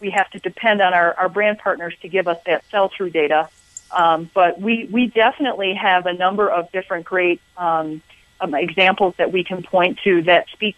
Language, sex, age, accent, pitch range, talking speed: English, female, 40-59, American, 170-190 Hz, 200 wpm